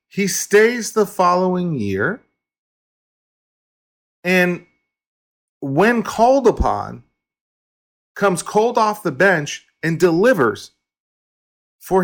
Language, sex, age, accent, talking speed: English, male, 40-59, American, 85 wpm